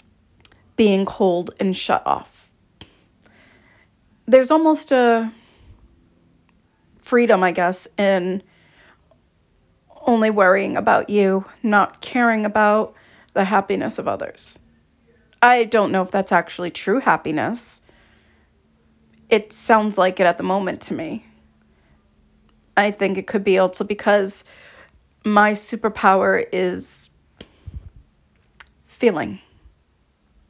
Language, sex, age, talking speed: English, female, 30-49, 100 wpm